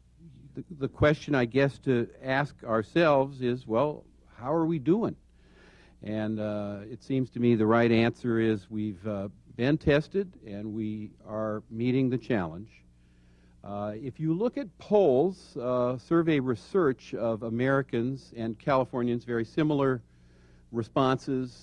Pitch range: 105-130 Hz